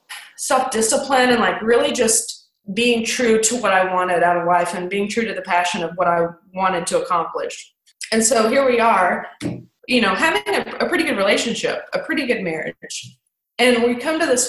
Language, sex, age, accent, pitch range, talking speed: English, female, 20-39, American, 185-245 Hz, 205 wpm